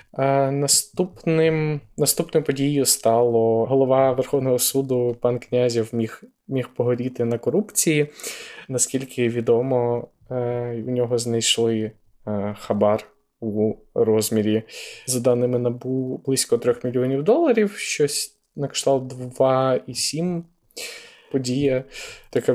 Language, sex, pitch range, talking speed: Ukrainian, male, 120-135 Hz, 95 wpm